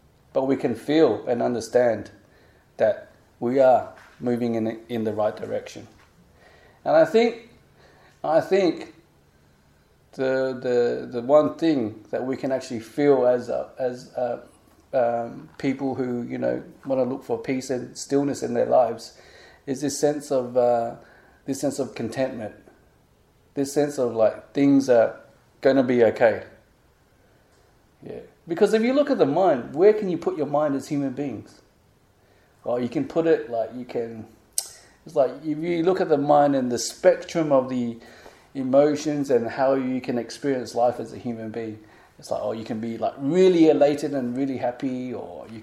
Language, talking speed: English, 175 wpm